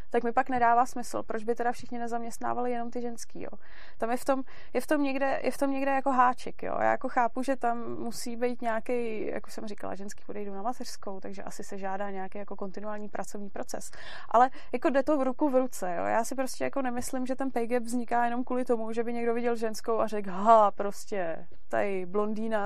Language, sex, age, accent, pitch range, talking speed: Czech, female, 20-39, native, 205-240 Hz, 230 wpm